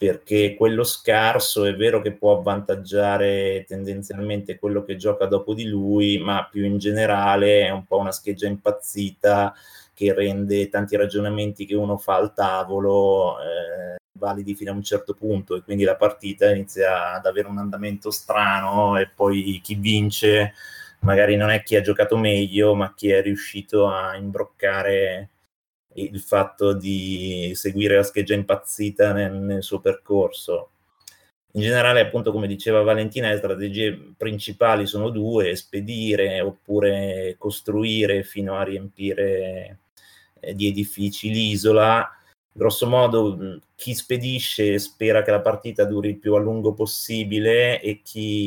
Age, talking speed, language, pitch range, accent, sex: 20-39, 145 wpm, Italian, 100-105 Hz, native, male